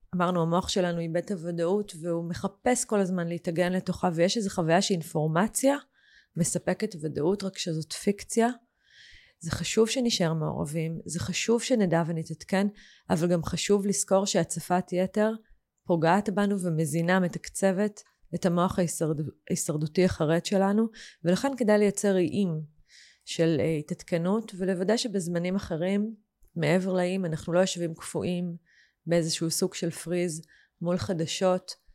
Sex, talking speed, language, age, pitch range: female, 125 wpm, Hebrew, 30-49, 165-200 Hz